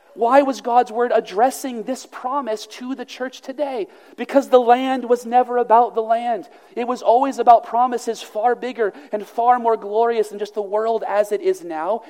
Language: English